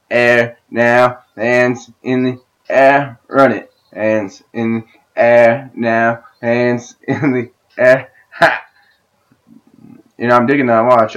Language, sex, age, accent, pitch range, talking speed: English, male, 20-39, American, 120-145 Hz, 130 wpm